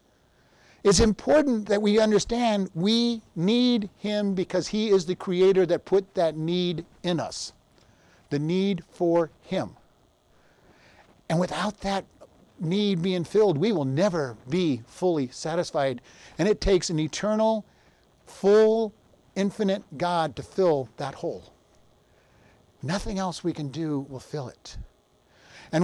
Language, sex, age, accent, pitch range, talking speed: English, male, 50-69, American, 175-230 Hz, 130 wpm